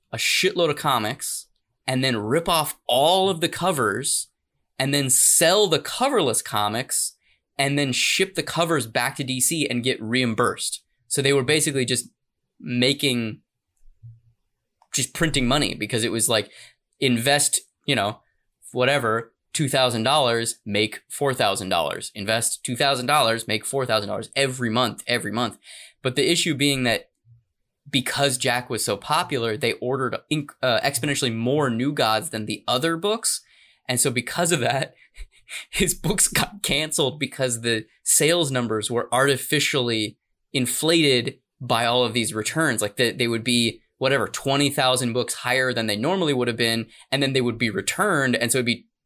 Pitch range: 115-140 Hz